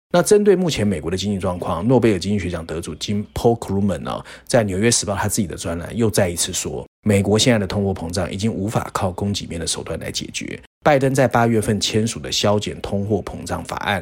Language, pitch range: Chinese, 95-115 Hz